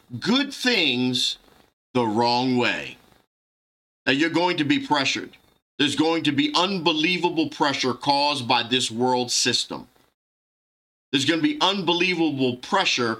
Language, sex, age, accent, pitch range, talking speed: English, male, 50-69, American, 140-210 Hz, 125 wpm